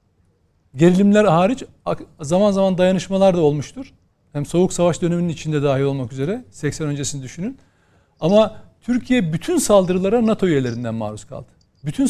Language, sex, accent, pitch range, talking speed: Turkish, male, native, 150-220 Hz, 135 wpm